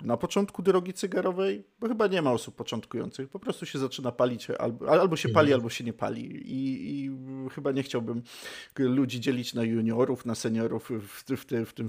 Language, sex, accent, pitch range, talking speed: Polish, male, native, 120-165 Hz, 185 wpm